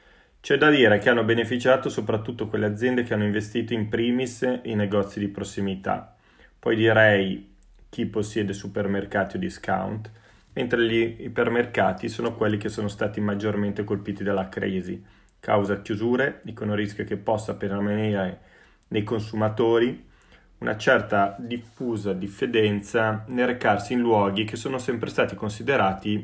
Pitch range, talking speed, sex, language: 100-115 Hz, 135 wpm, male, Italian